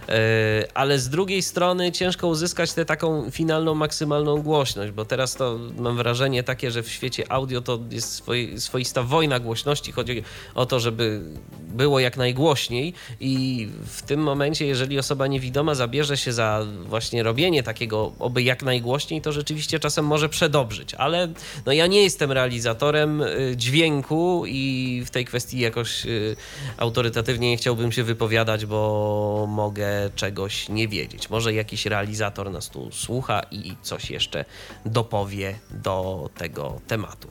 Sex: male